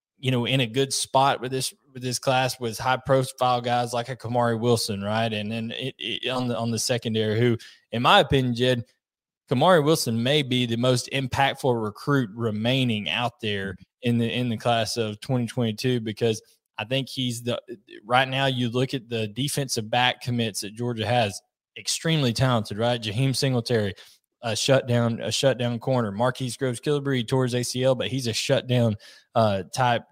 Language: English